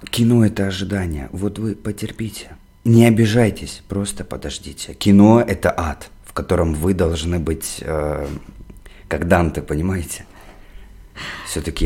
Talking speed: 115 wpm